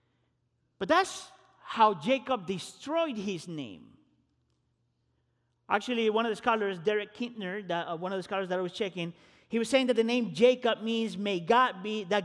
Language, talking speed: English, 175 wpm